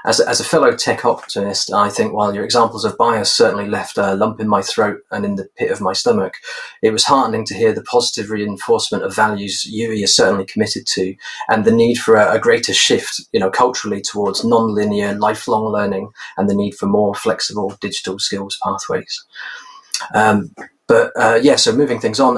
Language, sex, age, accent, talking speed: English, male, 30-49, British, 200 wpm